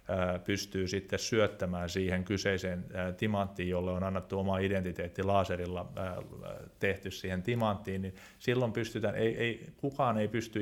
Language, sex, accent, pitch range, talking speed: Finnish, male, native, 95-105 Hz, 115 wpm